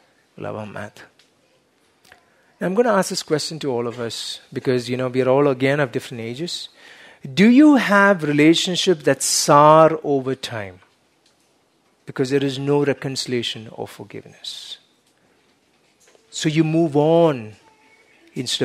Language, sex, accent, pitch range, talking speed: English, male, Indian, 125-170 Hz, 135 wpm